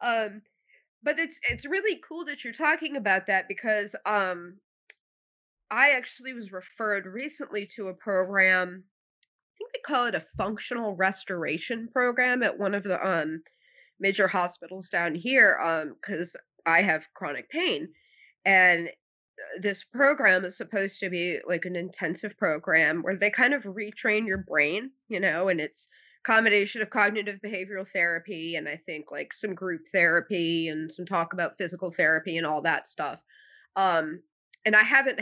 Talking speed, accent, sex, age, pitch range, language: 160 wpm, American, female, 20-39, 180-245 Hz, English